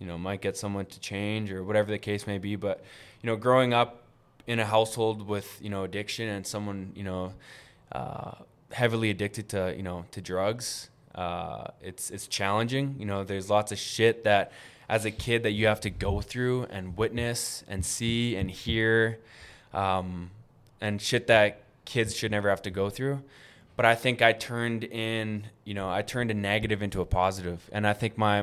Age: 20-39